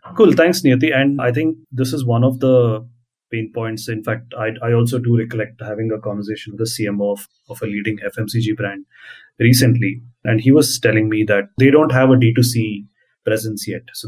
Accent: Indian